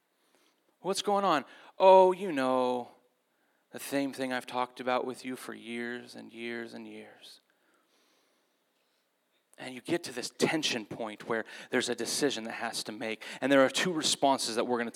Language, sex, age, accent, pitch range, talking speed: English, male, 30-49, American, 125-175 Hz, 175 wpm